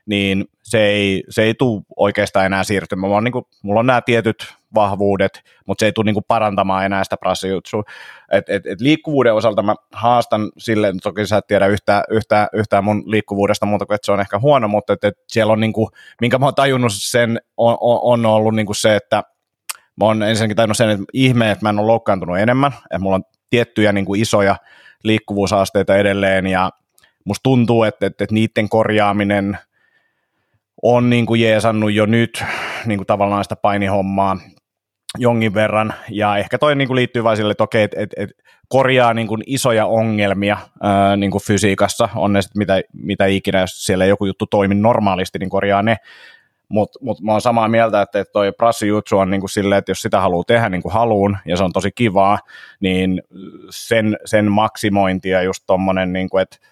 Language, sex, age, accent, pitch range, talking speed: Finnish, male, 30-49, native, 100-115 Hz, 190 wpm